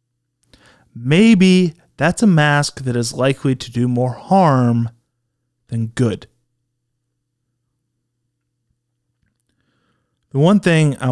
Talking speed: 90 wpm